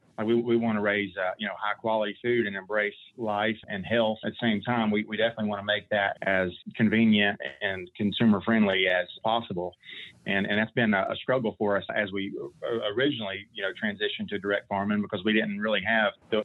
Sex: male